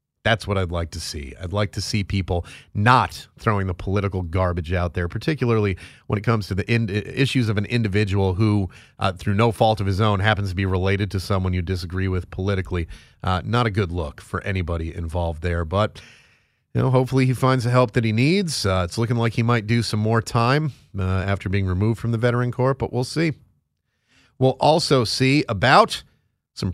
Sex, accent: male, American